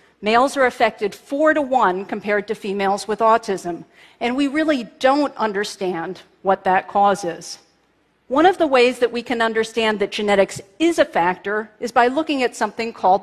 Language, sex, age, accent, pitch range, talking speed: English, female, 40-59, American, 200-265 Hz, 175 wpm